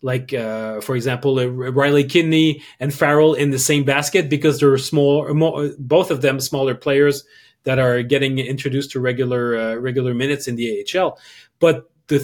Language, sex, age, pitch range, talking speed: English, male, 30-49, 135-160 Hz, 175 wpm